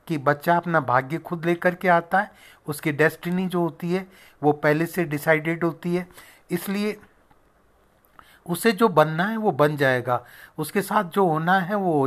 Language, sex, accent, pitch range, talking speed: Hindi, male, native, 155-190 Hz, 175 wpm